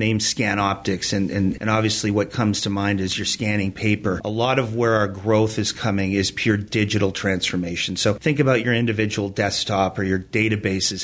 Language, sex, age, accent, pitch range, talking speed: English, male, 40-59, American, 105-120 Hz, 195 wpm